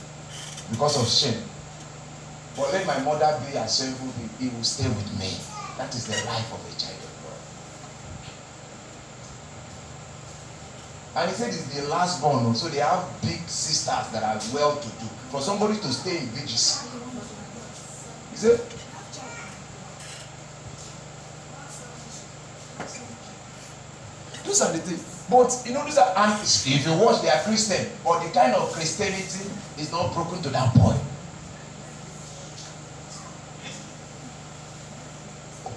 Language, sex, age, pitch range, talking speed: English, male, 40-59, 135-160 Hz, 125 wpm